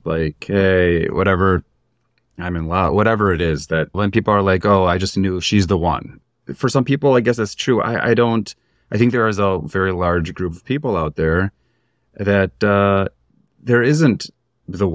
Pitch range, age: 90-105 Hz, 30-49